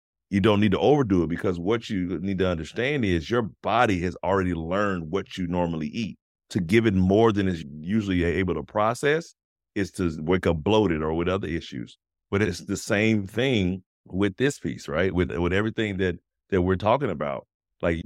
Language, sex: English, male